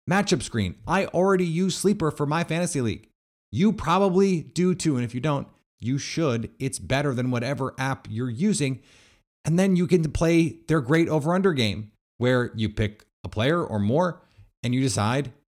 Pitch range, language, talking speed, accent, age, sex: 110-160 Hz, English, 180 wpm, American, 30-49, male